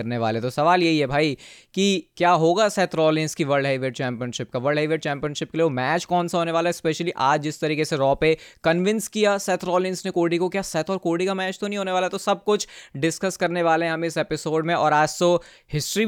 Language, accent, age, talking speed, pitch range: Hindi, native, 20-39, 165 wpm, 140-175 Hz